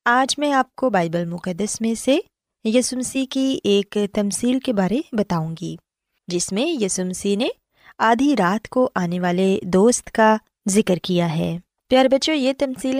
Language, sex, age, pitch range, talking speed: Urdu, female, 20-39, 185-260 Hz, 155 wpm